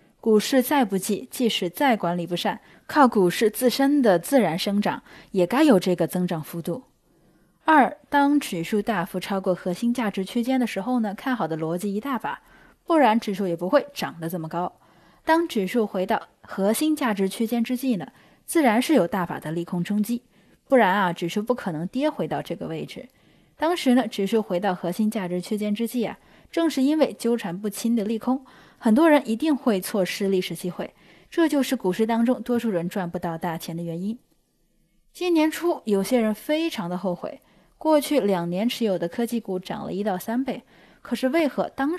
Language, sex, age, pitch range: Chinese, female, 10-29, 185-255 Hz